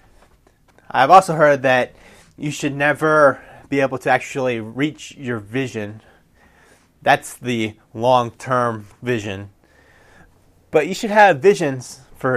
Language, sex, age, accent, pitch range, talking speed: English, male, 30-49, American, 115-165 Hz, 115 wpm